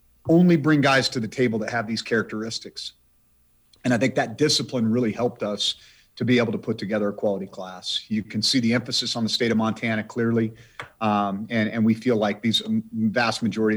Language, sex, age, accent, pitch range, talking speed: English, male, 40-59, American, 105-125 Hz, 205 wpm